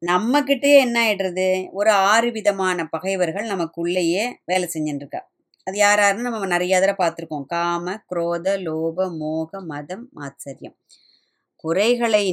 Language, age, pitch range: Tamil, 20-39, 175-230 Hz